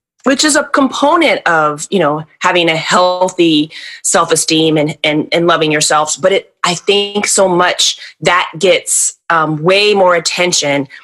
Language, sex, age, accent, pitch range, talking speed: English, female, 20-39, American, 170-215 Hz, 150 wpm